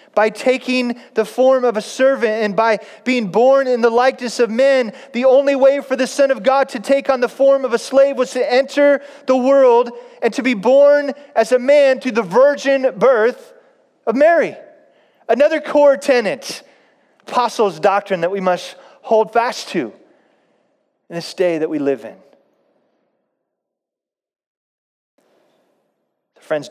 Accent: American